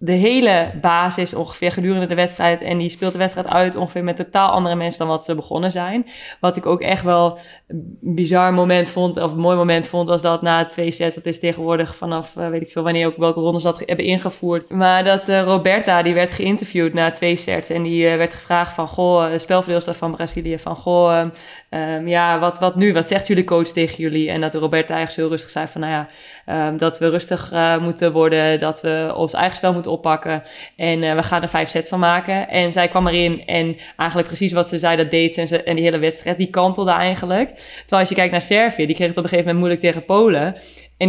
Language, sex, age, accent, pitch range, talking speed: Dutch, female, 20-39, Dutch, 165-180 Hz, 240 wpm